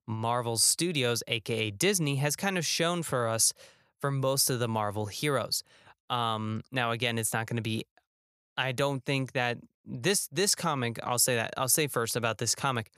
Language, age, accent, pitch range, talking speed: English, 20-39, American, 110-140 Hz, 185 wpm